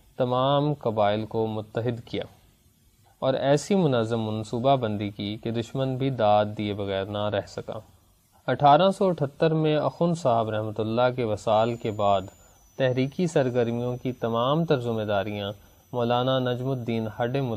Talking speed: 145 wpm